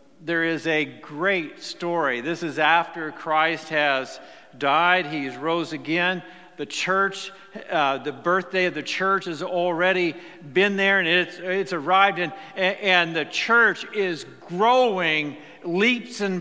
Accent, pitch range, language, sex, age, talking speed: American, 170-200 Hz, English, male, 50-69, 140 wpm